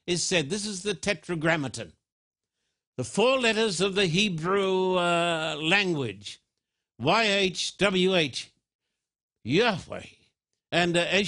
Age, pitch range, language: 60-79, 165-205 Hz, English